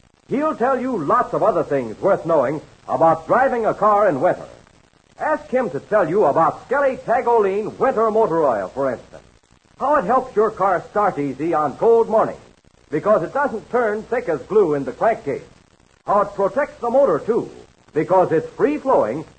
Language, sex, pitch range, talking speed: English, male, 170-255 Hz, 175 wpm